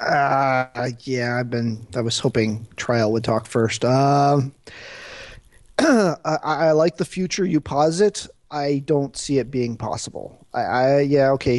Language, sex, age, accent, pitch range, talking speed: English, male, 30-49, American, 115-150 Hz, 150 wpm